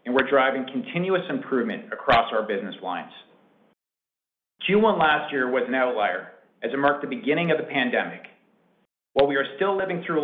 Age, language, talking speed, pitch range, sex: 40-59, English, 175 wpm, 140-215 Hz, male